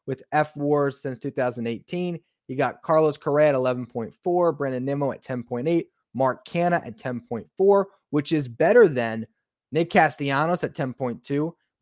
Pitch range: 120-155 Hz